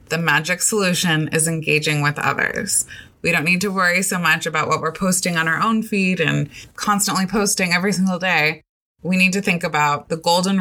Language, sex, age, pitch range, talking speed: English, female, 20-39, 160-205 Hz, 200 wpm